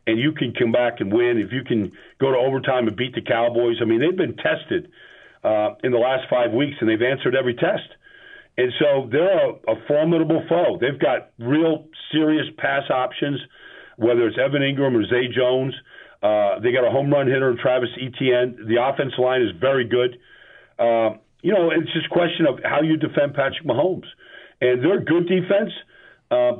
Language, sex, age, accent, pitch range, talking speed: English, male, 50-69, American, 125-155 Hz, 200 wpm